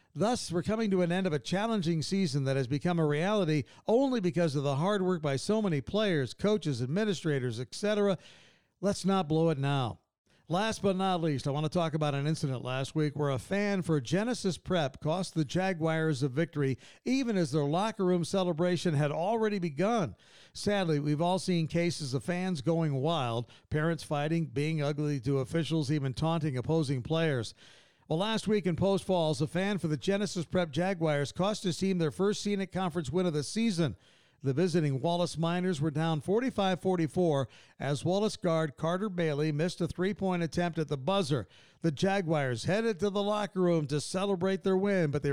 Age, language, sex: 50-69, English, male